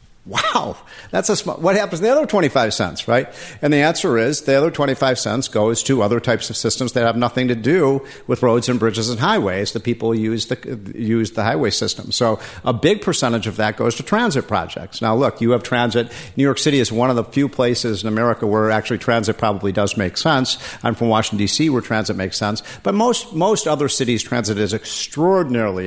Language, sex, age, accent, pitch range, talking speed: English, male, 50-69, American, 110-135 Hz, 220 wpm